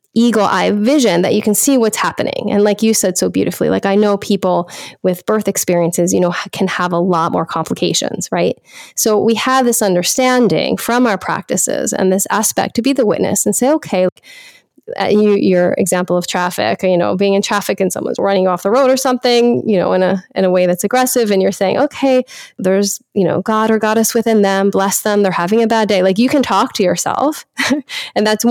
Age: 10-29